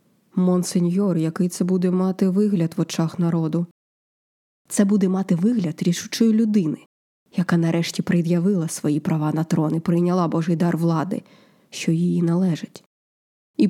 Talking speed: 135 wpm